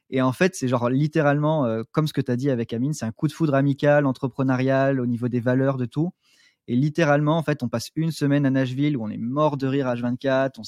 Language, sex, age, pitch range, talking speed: French, male, 20-39, 130-155 Hz, 260 wpm